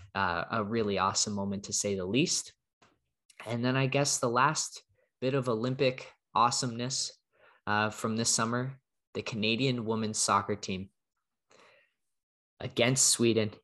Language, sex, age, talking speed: English, male, 20-39, 130 wpm